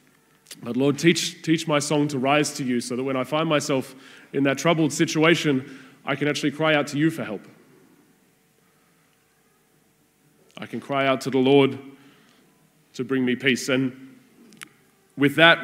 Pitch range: 125-150 Hz